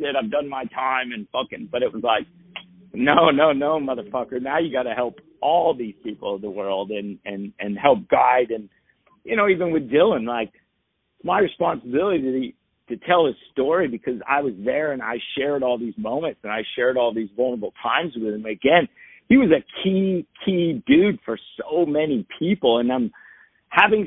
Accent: American